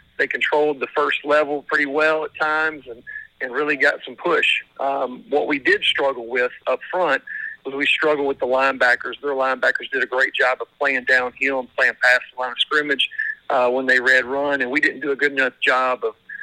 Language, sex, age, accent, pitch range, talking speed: English, male, 50-69, American, 130-170 Hz, 215 wpm